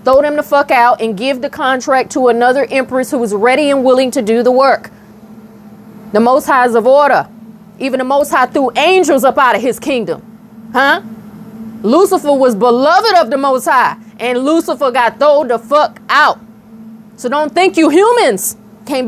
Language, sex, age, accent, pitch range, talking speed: English, female, 30-49, American, 220-270 Hz, 180 wpm